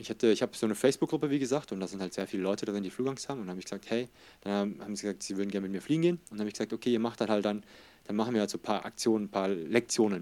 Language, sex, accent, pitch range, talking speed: German, male, German, 100-120 Hz, 335 wpm